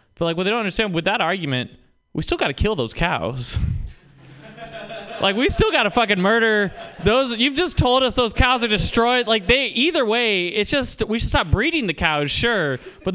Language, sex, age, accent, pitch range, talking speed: English, male, 20-39, American, 130-210 Hz, 215 wpm